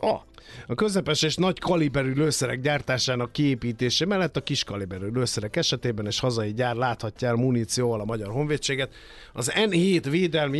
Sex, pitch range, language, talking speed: male, 120-145 Hz, Hungarian, 145 wpm